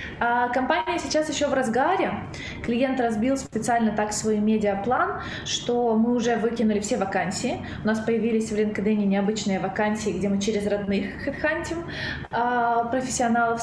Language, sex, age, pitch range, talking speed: Ukrainian, female, 20-39, 210-250 Hz, 130 wpm